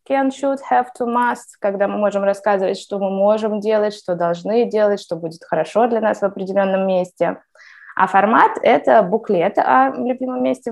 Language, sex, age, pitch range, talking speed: Russian, female, 20-39, 185-225 Hz, 175 wpm